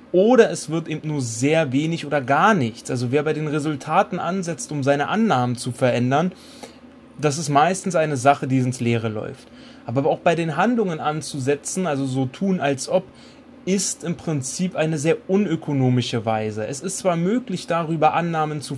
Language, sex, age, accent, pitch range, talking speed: German, male, 30-49, German, 135-185 Hz, 175 wpm